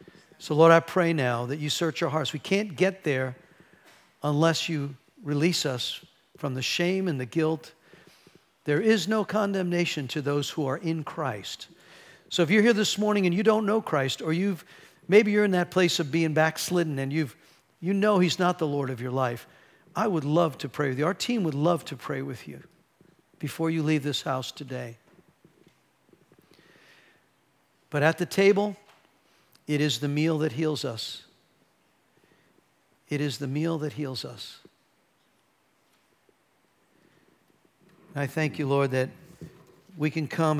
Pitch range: 135-170 Hz